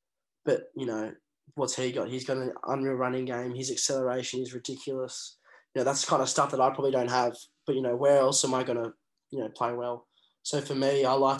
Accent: Australian